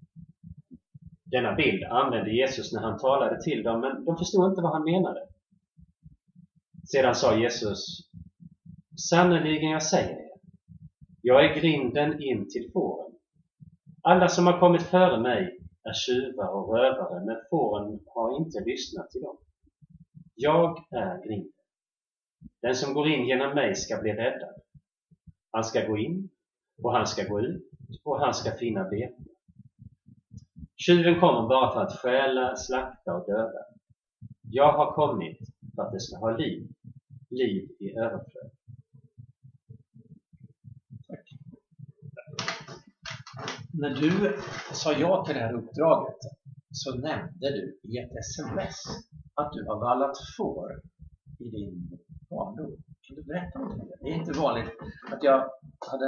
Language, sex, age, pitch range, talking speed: Swedish, male, 30-49, 125-170 Hz, 140 wpm